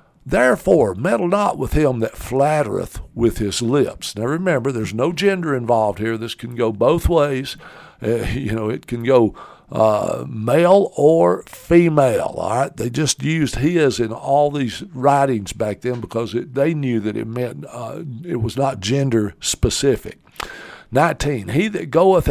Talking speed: 160 wpm